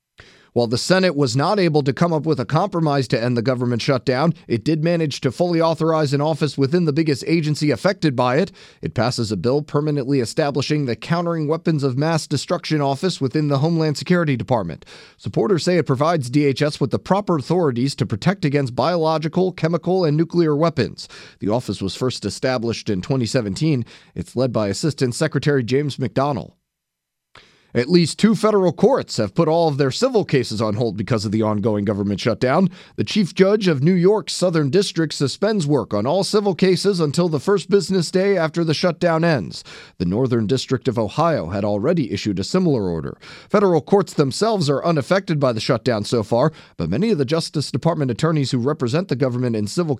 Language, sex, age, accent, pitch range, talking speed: English, male, 30-49, American, 125-170 Hz, 190 wpm